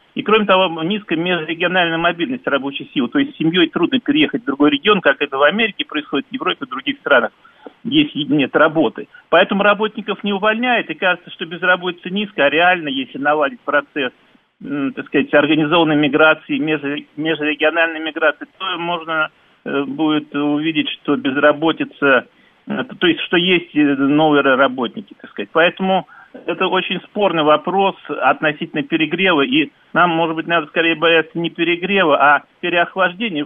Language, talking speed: Russian, 145 wpm